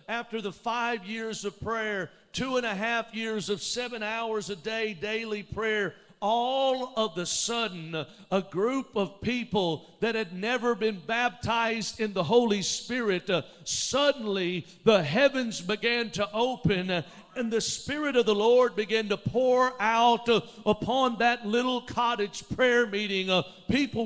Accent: American